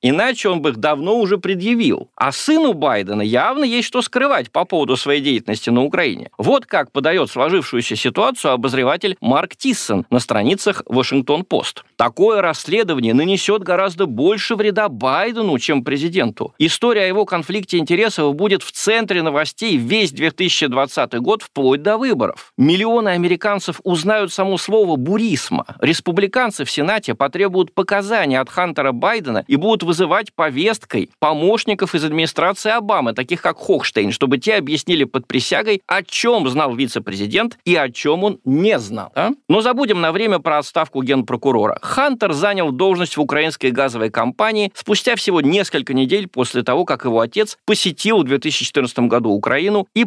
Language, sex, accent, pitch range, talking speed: Russian, male, native, 145-220 Hz, 150 wpm